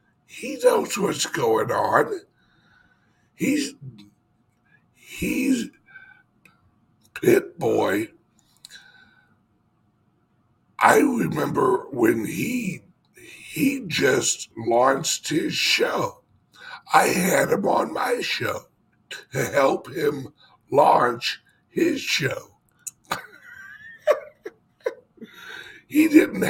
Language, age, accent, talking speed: English, 60-79, American, 70 wpm